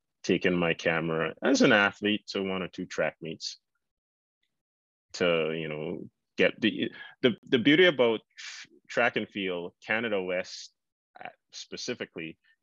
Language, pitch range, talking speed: English, 90-110 Hz, 130 wpm